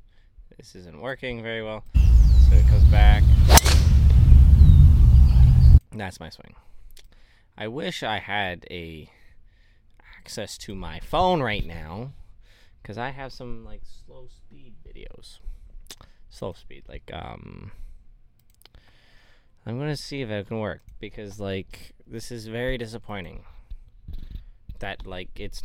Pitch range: 85-110 Hz